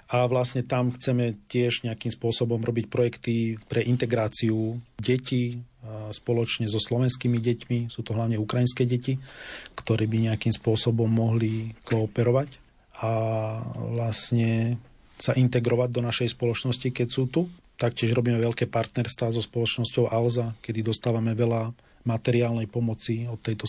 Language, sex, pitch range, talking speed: Slovak, male, 115-125 Hz, 130 wpm